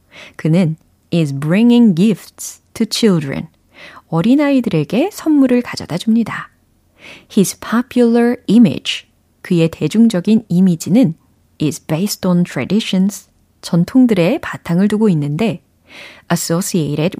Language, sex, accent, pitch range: Korean, female, native, 160-230 Hz